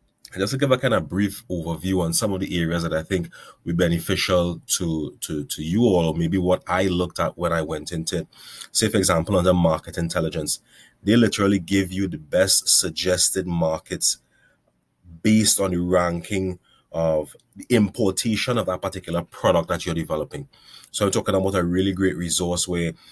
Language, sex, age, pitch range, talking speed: English, male, 30-49, 85-95 Hz, 185 wpm